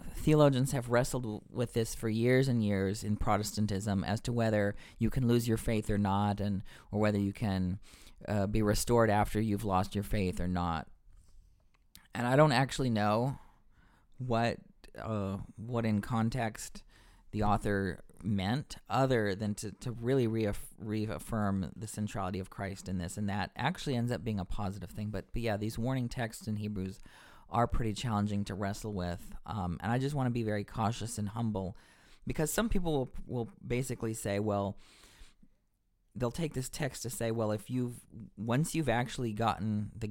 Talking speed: 180 wpm